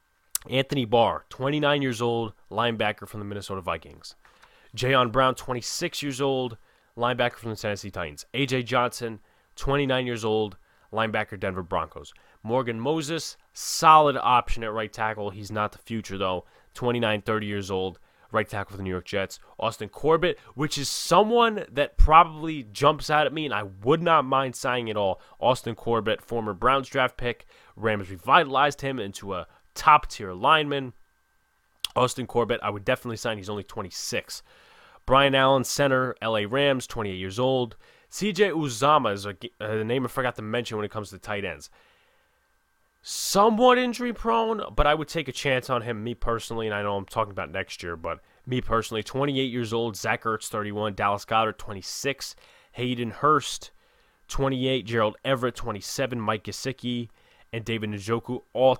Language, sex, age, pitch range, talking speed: English, male, 20-39, 105-135 Hz, 165 wpm